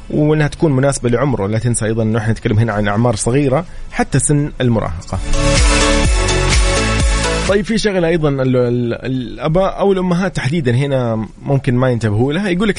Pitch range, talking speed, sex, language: 110-150 Hz, 140 wpm, male, English